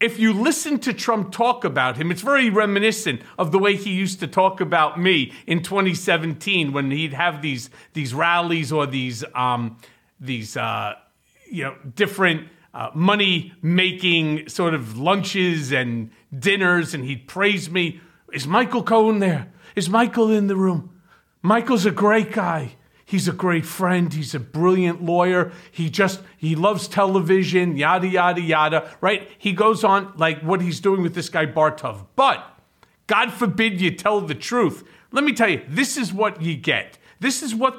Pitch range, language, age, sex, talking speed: 160-210 Hz, English, 40-59, male, 170 wpm